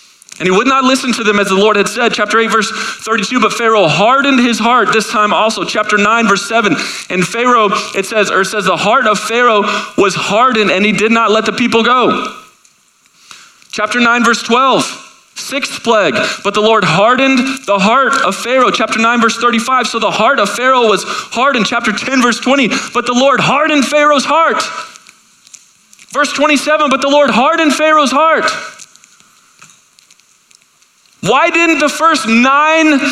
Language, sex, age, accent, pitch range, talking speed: English, male, 30-49, American, 205-275 Hz, 175 wpm